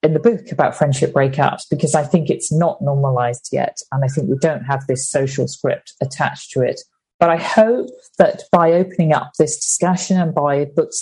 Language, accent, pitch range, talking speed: English, British, 135-160 Hz, 200 wpm